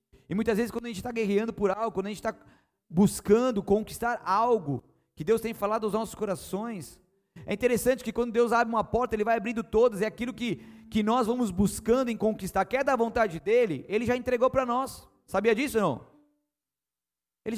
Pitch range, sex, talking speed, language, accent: 165-235 Hz, male, 205 wpm, Portuguese, Brazilian